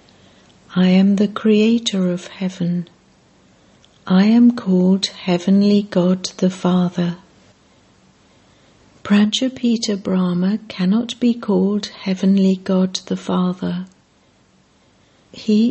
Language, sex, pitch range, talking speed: English, female, 185-215 Hz, 90 wpm